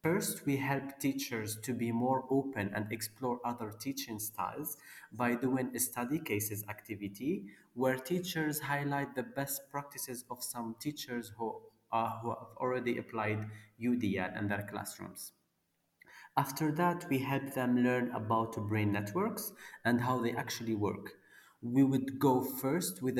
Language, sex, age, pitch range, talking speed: English, male, 30-49, 115-140 Hz, 145 wpm